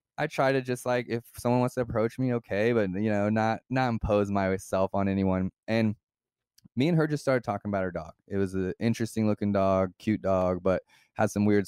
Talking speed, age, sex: 220 wpm, 20-39, male